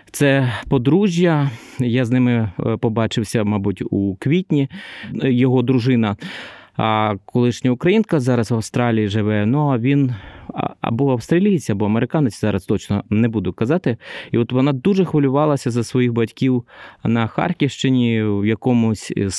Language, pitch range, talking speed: Ukrainian, 105-130 Hz, 130 wpm